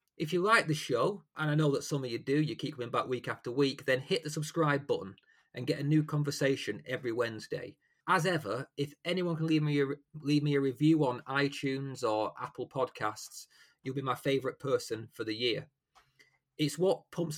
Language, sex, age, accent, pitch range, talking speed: English, male, 30-49, British, 135-170 Hz, 200 wpm